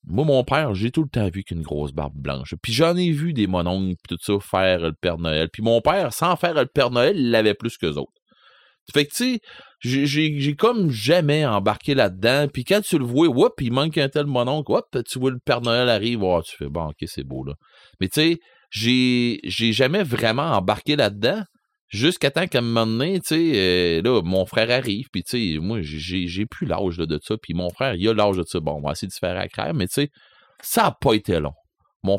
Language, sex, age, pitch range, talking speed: French, male, 30-49, 95-155 Hz, 240 wpm